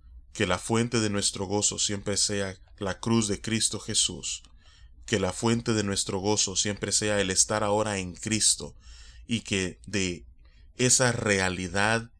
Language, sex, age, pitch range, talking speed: Spanish, male, 20-39, 95-110 Hz, 155 wpm